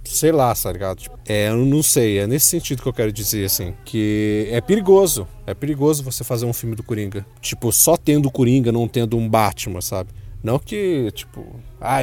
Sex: male